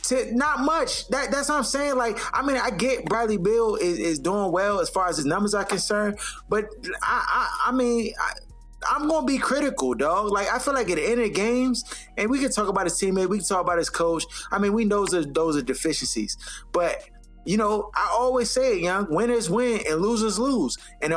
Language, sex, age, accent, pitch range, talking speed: English, male, 20-39, American, 200-255 Hz, 230 wpm